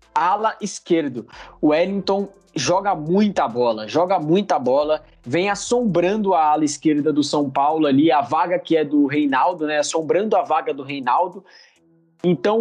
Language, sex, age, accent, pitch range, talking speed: Portuguese, male, 20-39, Brazilian, 155-200 Hz, 150 wpm